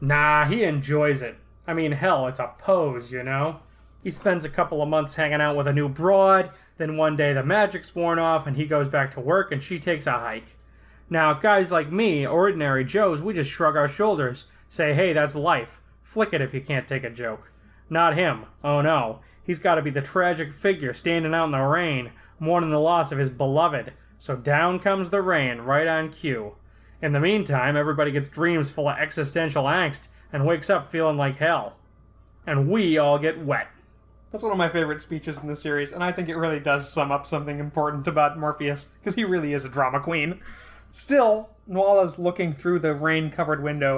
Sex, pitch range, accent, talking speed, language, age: male, 140-170 Hz, American, 205 wpm, English, 20-39